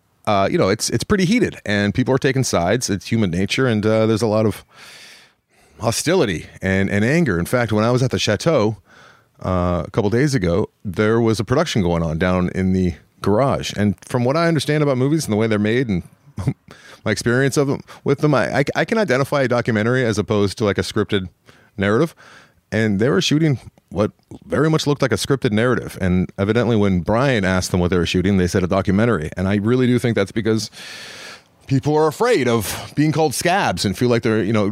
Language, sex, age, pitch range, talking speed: English, male, 30-49, 95-125 Hz, 220 wpm